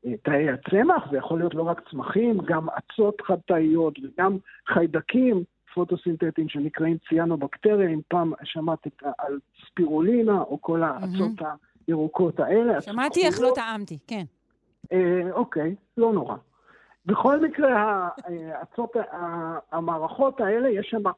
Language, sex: Hebrew, male